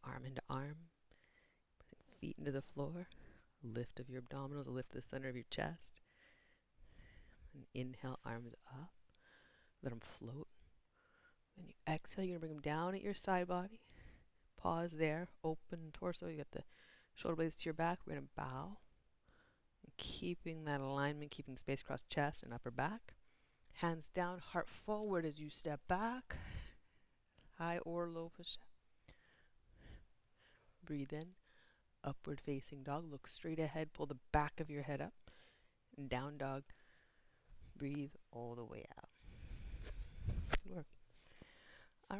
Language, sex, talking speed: English, female, 140 wpm